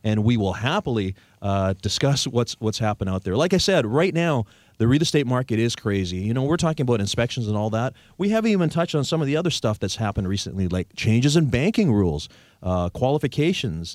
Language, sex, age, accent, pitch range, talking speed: English, male, 30-49, American, 100-135 Hz, 220 wpm